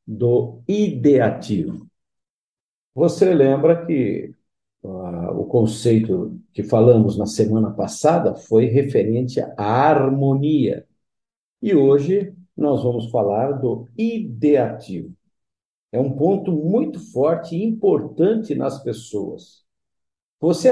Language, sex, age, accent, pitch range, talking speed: Portuguese, male, 50-69, Brazilian, 120-170 Hz, 95 wpm